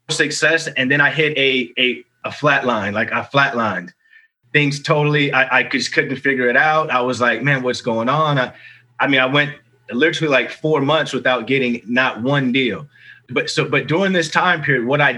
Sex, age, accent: male, 30-49, American